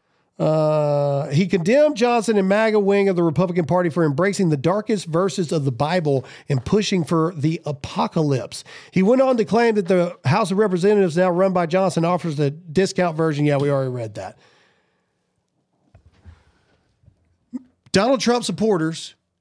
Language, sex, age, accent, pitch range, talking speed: English, male, 40-59, American, 160-215 Hz, 155 wpm